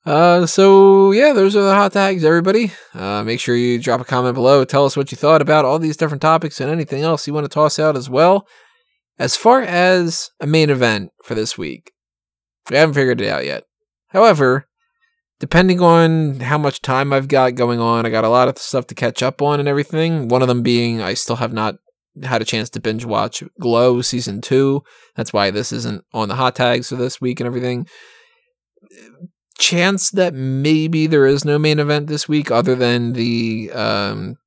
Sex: male